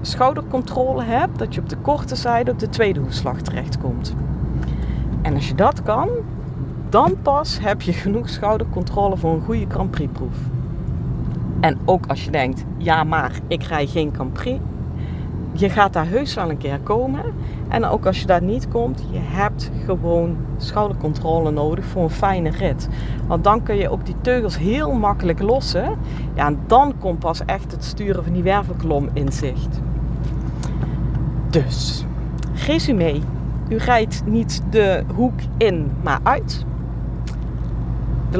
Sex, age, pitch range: female, 40-59, 125-170 Hz